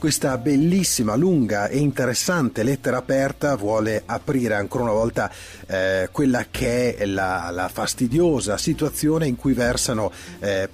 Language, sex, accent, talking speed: English, male, Italian, 135 wpm